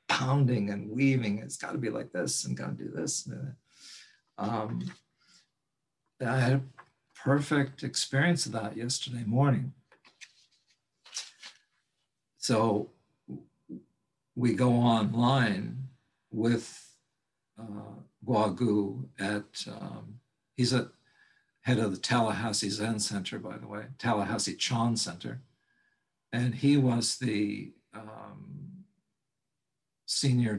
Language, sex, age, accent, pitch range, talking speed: English, male, 60-79, American, 110-135 Hz, 110 wpm